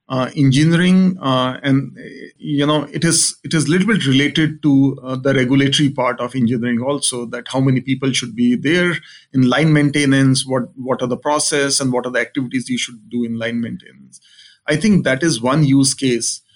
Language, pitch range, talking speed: English, 125-145 Hz, 200 wpm